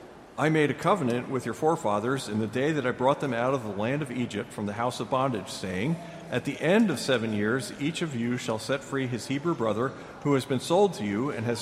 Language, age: English, 50-69